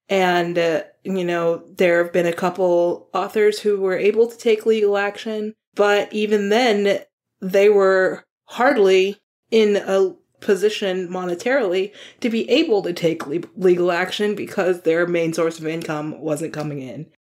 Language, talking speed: English, 150 wpm